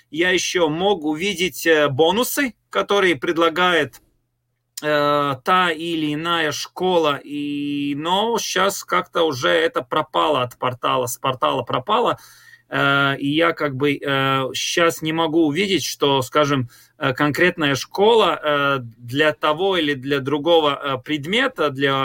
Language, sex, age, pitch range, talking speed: Russian, male, 30-49, 135-170 Hz, 110 wpm